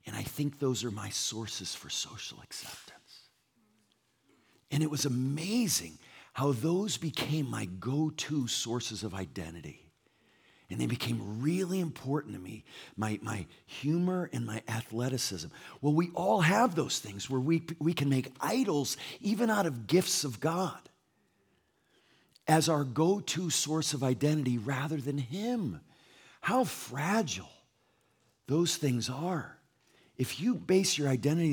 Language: English